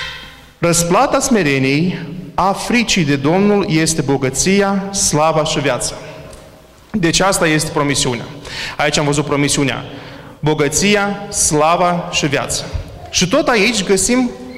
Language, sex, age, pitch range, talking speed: Romanian, male, 30-49, 165-230 Hz, 110 wpm